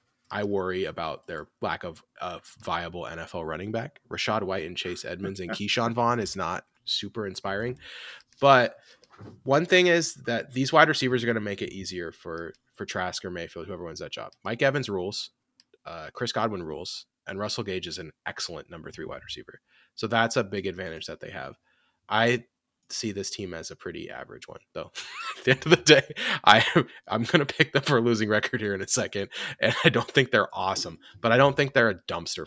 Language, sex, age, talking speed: English, male, 20-39, 210 wpm